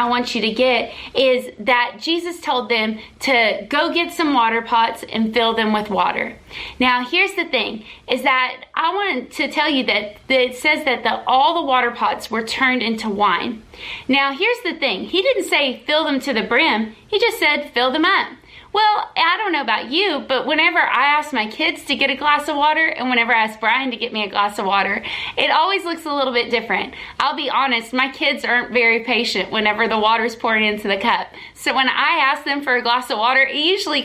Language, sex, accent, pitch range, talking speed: English, female, American, 230-305 Hz, 225 wpm